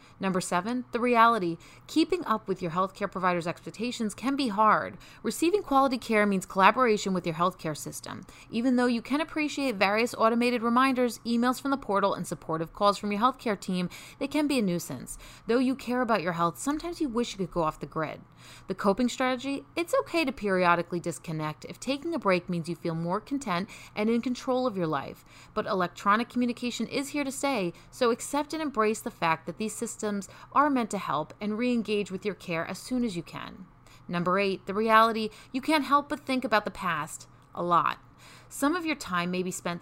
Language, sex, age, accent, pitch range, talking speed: English, female, 30-49, American, 180-255 Hz, 205 wpm